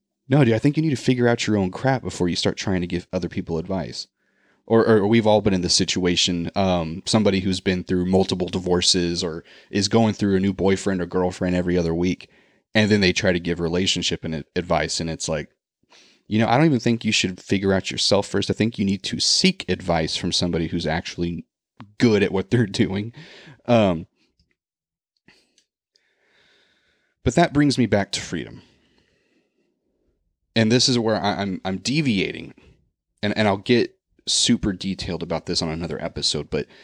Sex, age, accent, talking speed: male, 30-49, American, 180 wpm